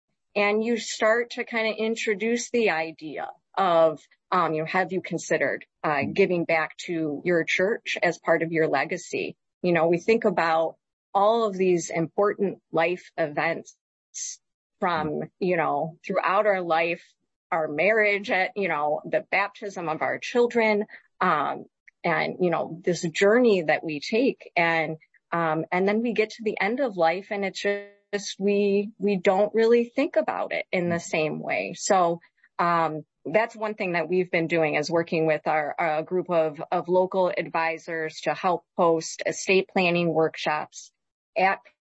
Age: 30-49